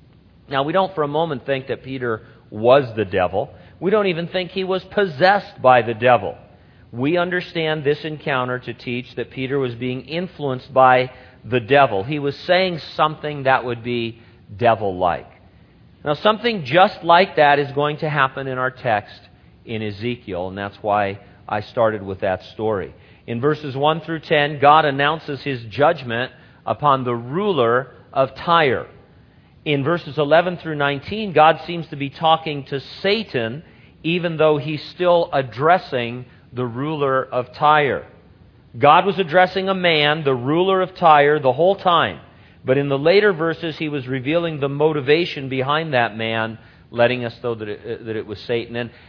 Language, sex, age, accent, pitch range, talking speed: English, male, 50-69, American, 125-160 Hz, 165 wpm